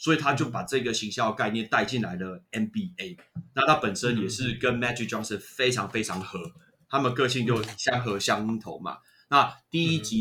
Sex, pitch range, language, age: male, 110-130 Hz, Chinese, 30-49